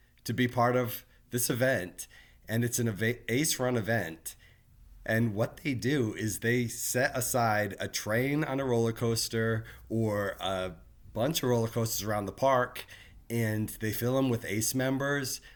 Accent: American